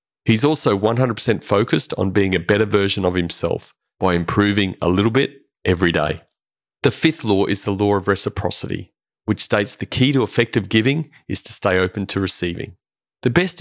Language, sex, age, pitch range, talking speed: English, male, 30-49, 90-110 Hz, 180 wpm